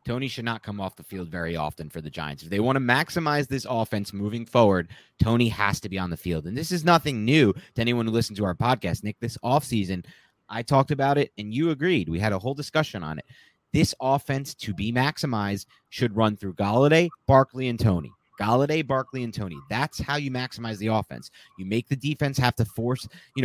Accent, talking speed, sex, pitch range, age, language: American, 225 wpm, male, 105-145 Hz, 30-49, English